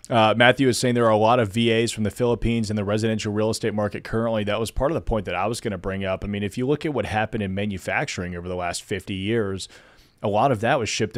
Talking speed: 290 wpm